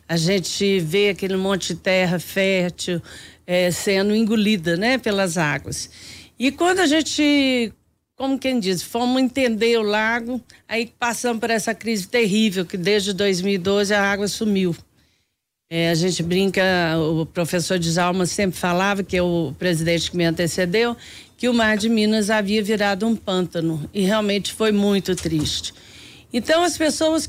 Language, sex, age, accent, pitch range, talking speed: Portuguese, female, 50-69, Brazilian, 190-250 Hz, 150 wpm